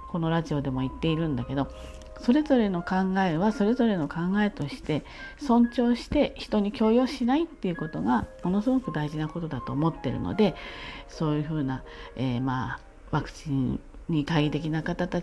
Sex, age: female, 40-59